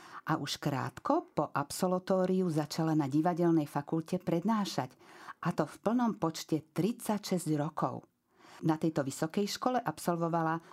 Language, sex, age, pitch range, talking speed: Slovak, female, 50-69, 140-170 Hz, 125 wpm